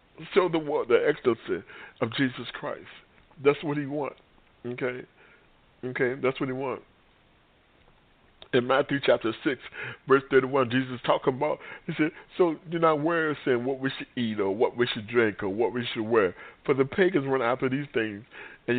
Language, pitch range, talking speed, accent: English, 125-175 Hz, 180 wpm, American